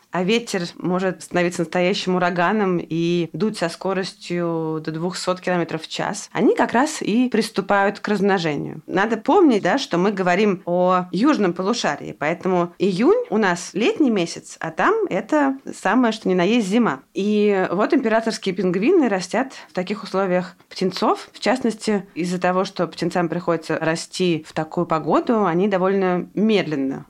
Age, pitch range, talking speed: 20-39, 165-210 Hz, 150 wpm